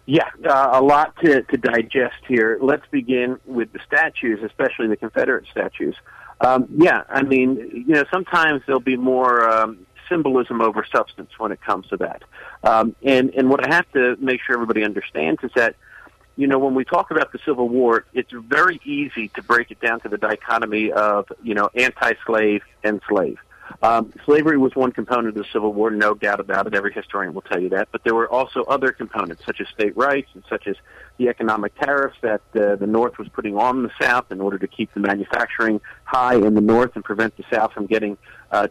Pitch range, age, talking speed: 110-130 Hz, 50-69, 210 wpm